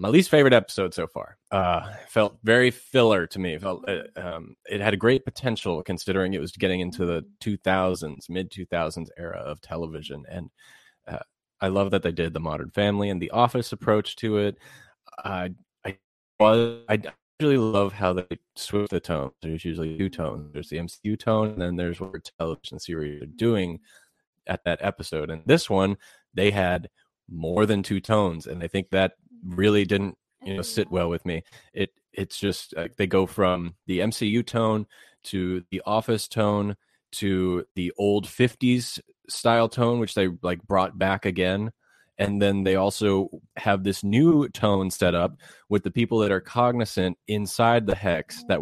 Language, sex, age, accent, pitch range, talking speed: English, male, 20-39, American, 90-110 Hz, 180 wpm